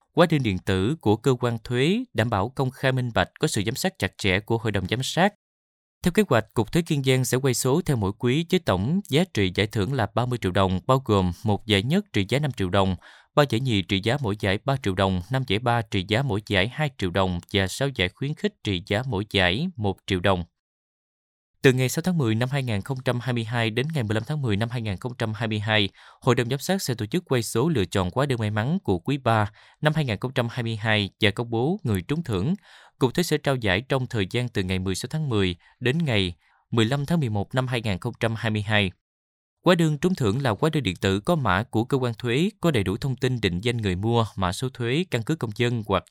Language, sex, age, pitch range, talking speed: Vietnamese, male, 20-39, 100-135 Hz, 235 wpm